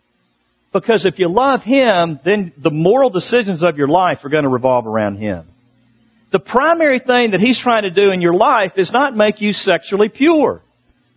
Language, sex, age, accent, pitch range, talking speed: English, male, 50-69, American, 155-250 Hz, 190 wpm